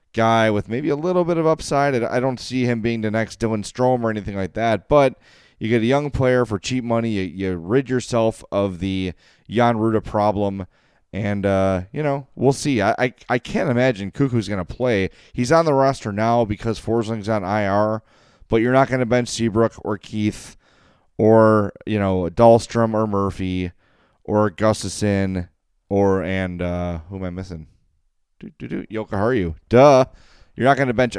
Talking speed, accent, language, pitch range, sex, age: 190 wpm, American, English, 95-120 Hz, male, 30-49